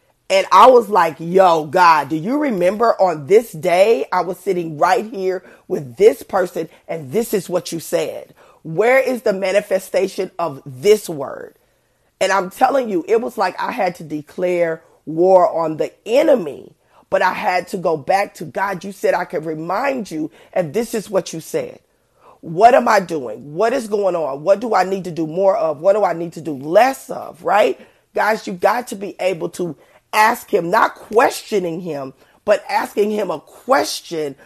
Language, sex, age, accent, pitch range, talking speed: English, female, 30-49, American, 160-200 Hz, 190 wpm